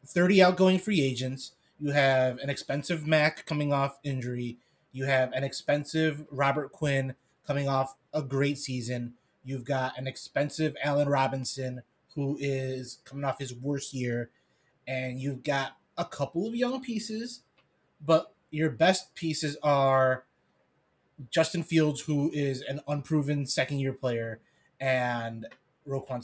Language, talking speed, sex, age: English, 135 wpm, male, 20-39